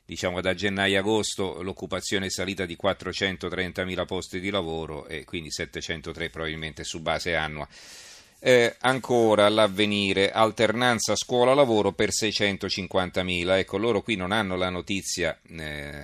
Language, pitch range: Italian, 85-105 Hz